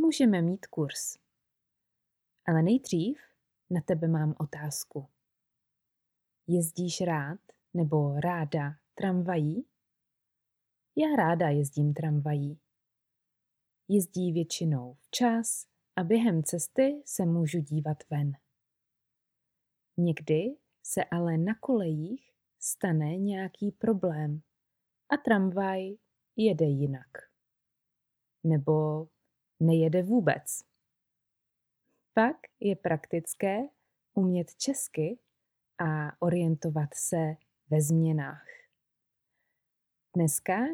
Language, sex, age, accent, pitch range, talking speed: Czech, female, 20-39, native, 150-195 Hz, 80 wpm